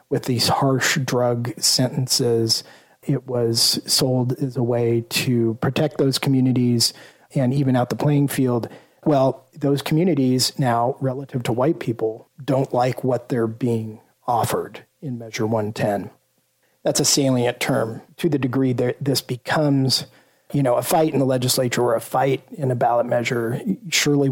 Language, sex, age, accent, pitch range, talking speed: English, male, 40-59, American, 120-140 Hz, 155 wpm